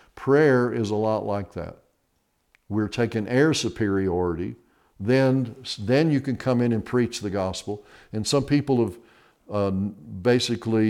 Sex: male